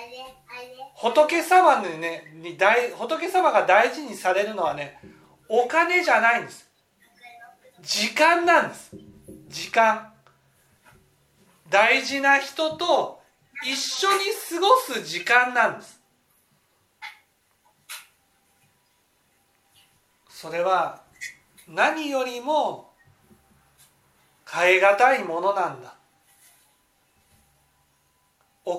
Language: Japanese